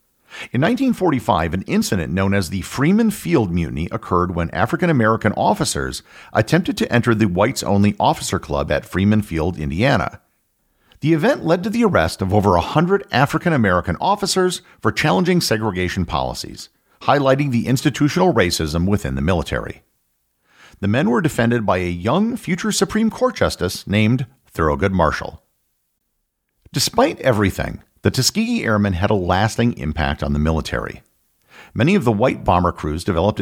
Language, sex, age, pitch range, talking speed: English, male, 50-69, 90-135 Hz, 145 wpm